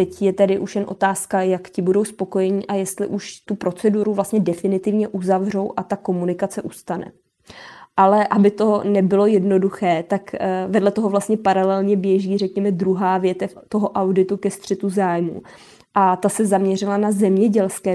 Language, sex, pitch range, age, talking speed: Czech, female, 180-200 Hz, 20-39, 155 wpm